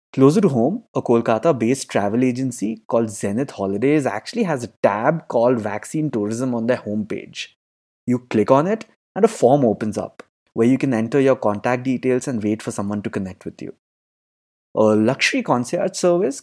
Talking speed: 175 wpm